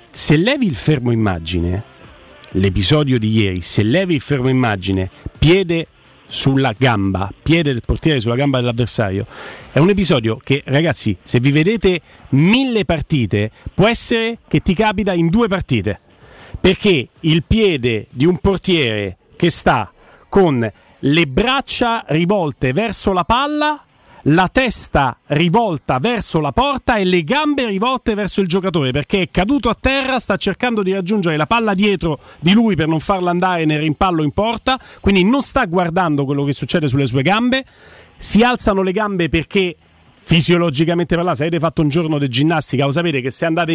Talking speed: 165 wpm